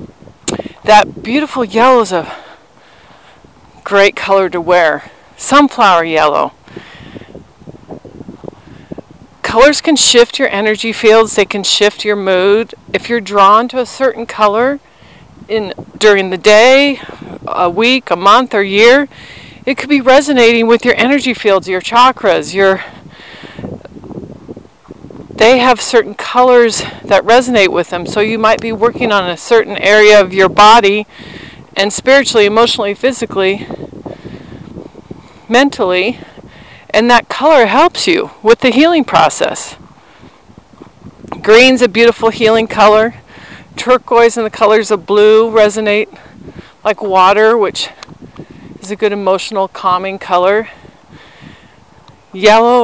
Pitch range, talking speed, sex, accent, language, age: 200-245 Hz, 120 wpm, female, American, English, 40-59